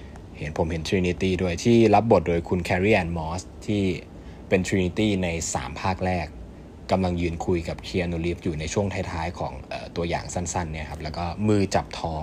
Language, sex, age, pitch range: Thai, male, 20-39, 80-100 Hz